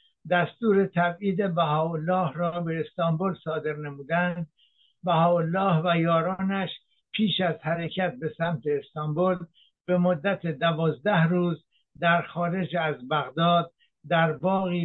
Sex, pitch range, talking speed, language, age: male, 165-185 Hz, 110 wpm, Persian, 60-79